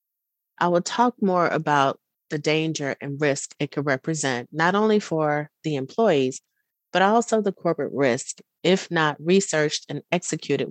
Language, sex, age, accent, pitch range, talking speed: English, female, 30-49, American, 145-175 Hz, 150 wpm